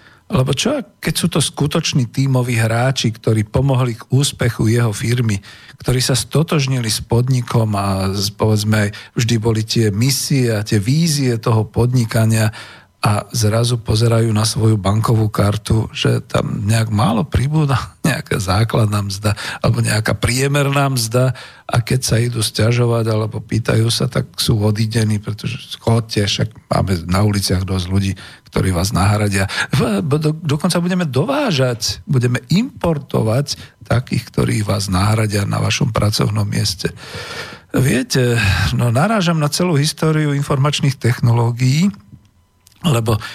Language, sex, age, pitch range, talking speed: Slovak, male, 50-69, 105-135 Hz, 130 wpm